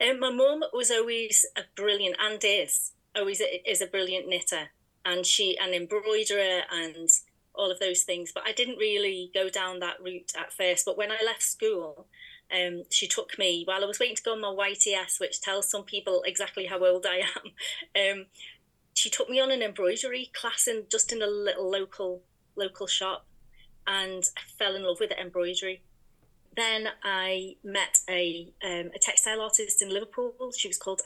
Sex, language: female, English